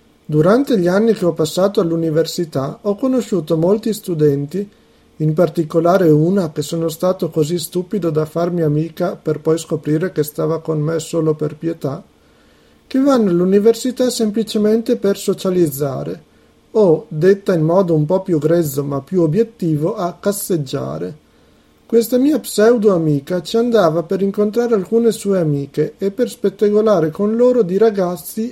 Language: Italian